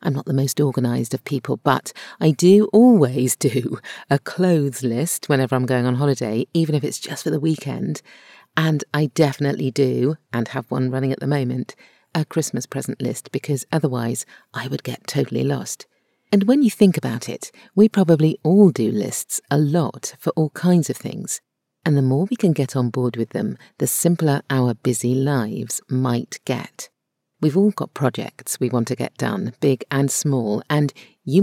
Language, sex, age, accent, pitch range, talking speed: English, female, 40-59, British, 130-165 Hz, 185 wpm